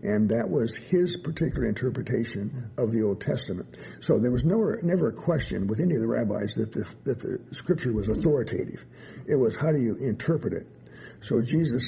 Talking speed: 190 wpm